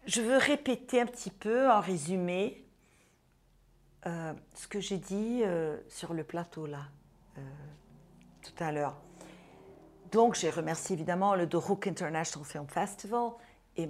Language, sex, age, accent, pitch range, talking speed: French, female, 50-69, French, 165-215 Hz, 140 wpm